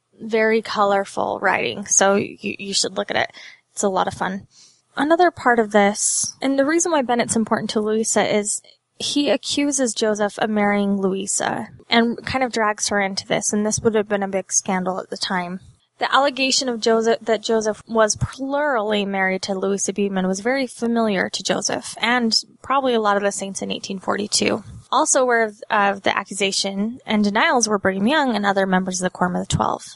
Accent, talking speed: American, 195 wpm